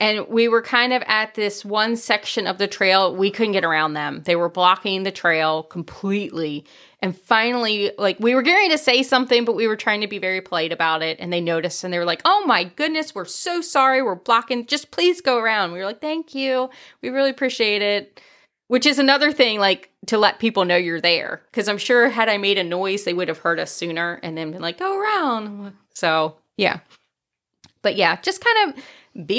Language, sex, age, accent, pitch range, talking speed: English, female, 30-49, American, 195-260 Hz, 225 wpm